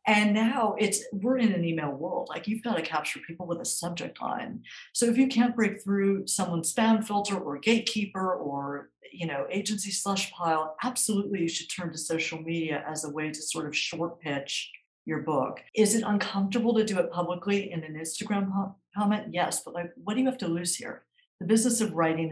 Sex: female